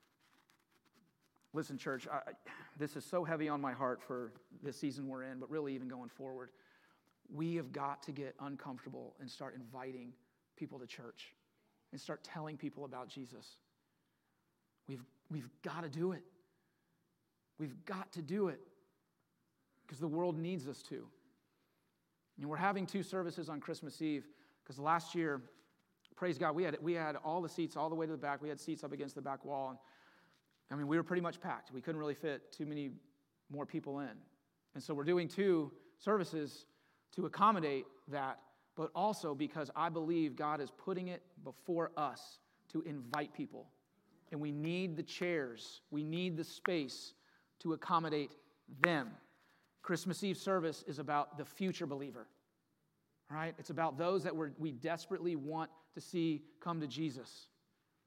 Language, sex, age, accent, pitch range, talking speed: English, male, 40-59, American, 140-170 Hz, 165 wpm